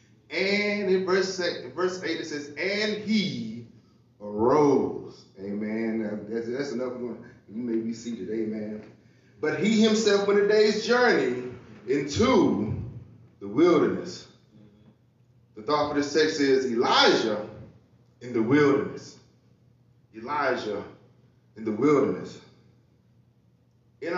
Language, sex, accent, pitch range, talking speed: English, male, American, 115-185 Hz, 110 wpm